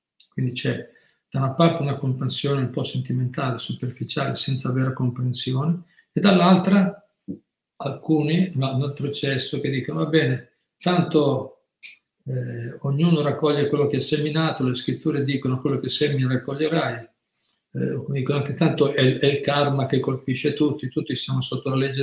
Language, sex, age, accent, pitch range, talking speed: Italian, male, 50-69, native, 130-150 Hz, 155 wpm